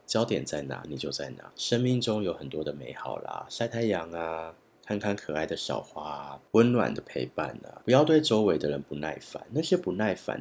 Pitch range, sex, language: 75-105 Hz, male, Chinese